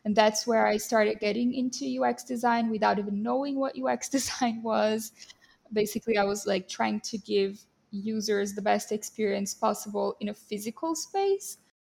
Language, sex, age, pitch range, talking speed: English, female, 10-29, 210-250 Hz, 160 wpm